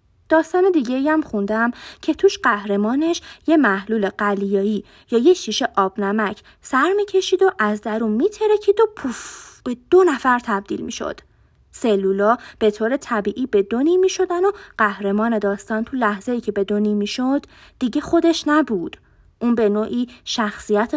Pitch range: 210-280 Hz